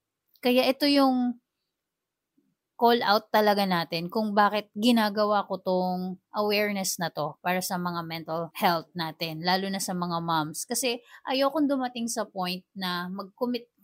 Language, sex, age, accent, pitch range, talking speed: Filipino, female, 20-39, native, 180-220 Hz, 145 wpm